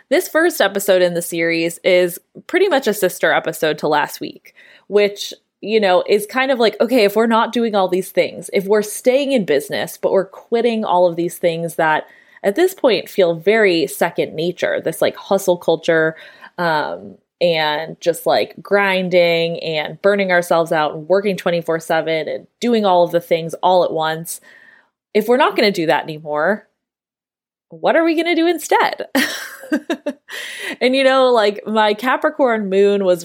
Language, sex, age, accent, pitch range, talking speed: English, female, 20-39, American, 180-245 Hz, 180 wpm